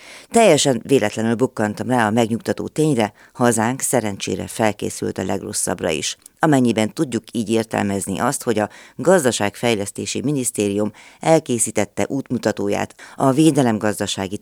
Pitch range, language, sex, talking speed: 105-130 Hz, Hungarian, female, 110 wpm